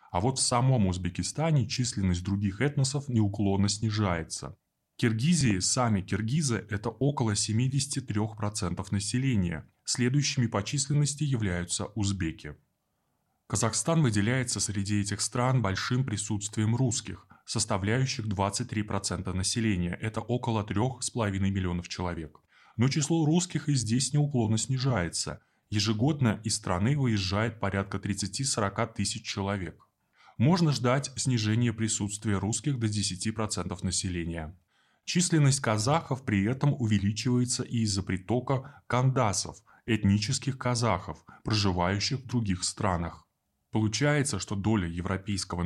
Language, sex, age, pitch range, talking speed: Russian, male, 20-39, 95-125 Hz, 105 wpm